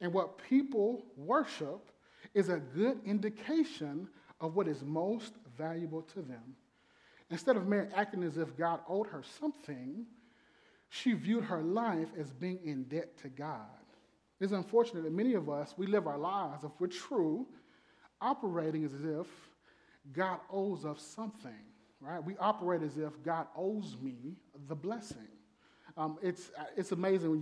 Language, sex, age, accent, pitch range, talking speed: English, male, 30-49, American, 145-205 Hz, 155 wpm